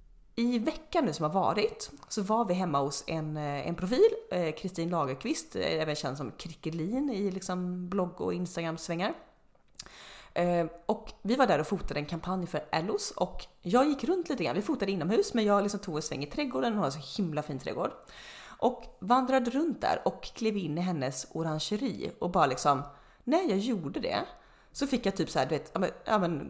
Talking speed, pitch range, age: 200 wpm, 165-240 Hz, 30-49